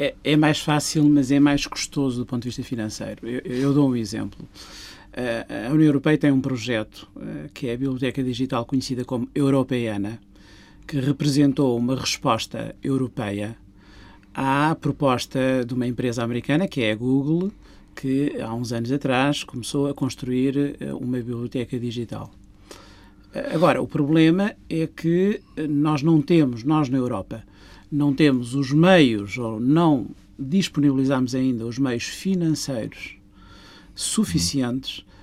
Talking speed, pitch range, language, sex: 135 wpm, 120-150 Hz, Portuguese, male